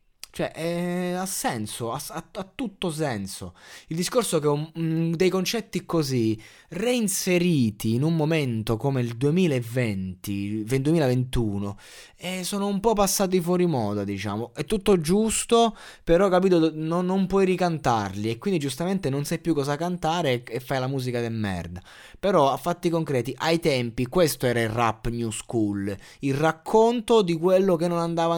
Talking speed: 155 wpm